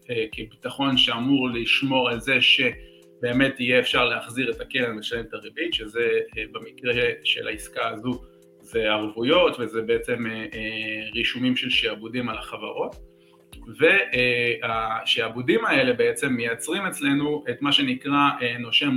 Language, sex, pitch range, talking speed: English, male, 115-145 Hz, 130 wpm